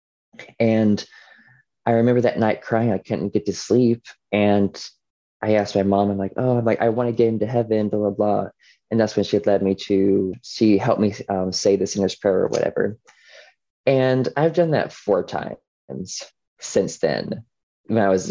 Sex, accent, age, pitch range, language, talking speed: male, American, 20-39, 100-115 Hz, English, 190 wpm